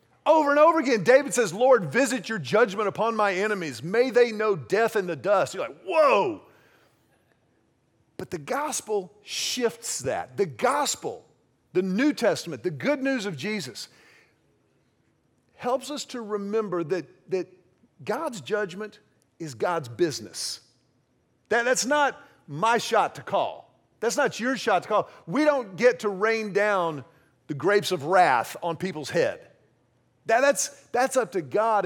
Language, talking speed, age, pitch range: English, 150 wpm, 40-59, 145-220 Hz